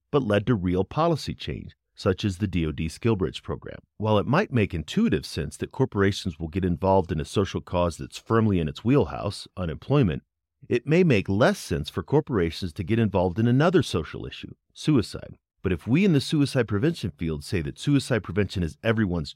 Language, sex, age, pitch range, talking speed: English, male, 40-59, 85-130 Hz, 190 wpm